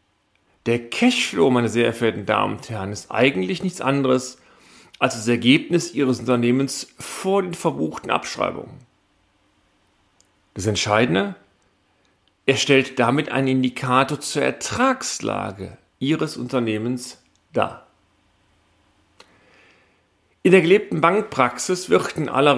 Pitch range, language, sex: 110-155 Hz, German, male